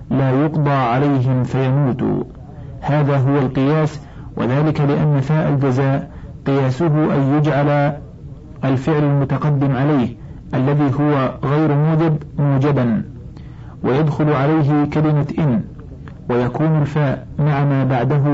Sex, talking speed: male, 100 wpm